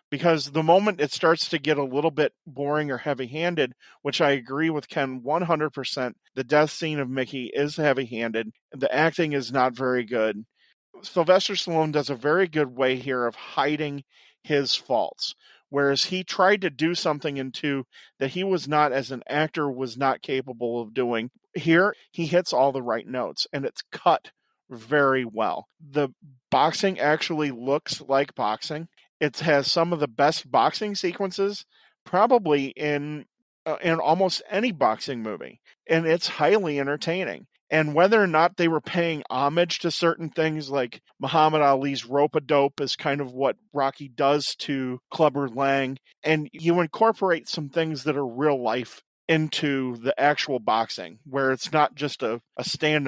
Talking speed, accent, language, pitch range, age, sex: 165 wpm, American, English, 135-165 Hz, 40-59, male